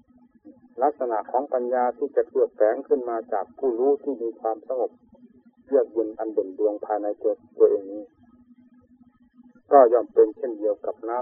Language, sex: Thai, male